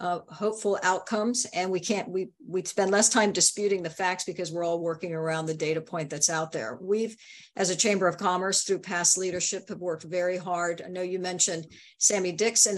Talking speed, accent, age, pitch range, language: 205 wpm, American, 50-69, 170-200 Hz, English